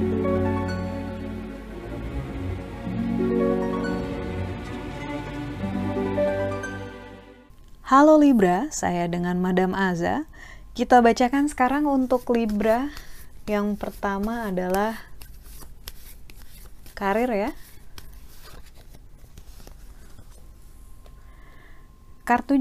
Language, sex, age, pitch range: Indonesian, female, 20-39, 160-230 Hz